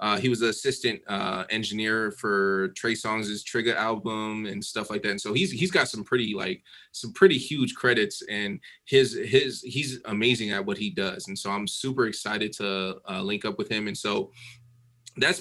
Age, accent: 20-39, American